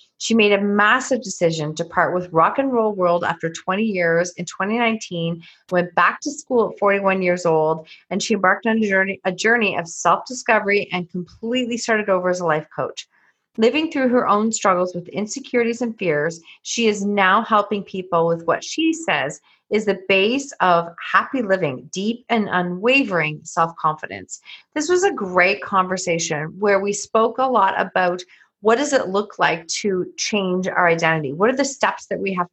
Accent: American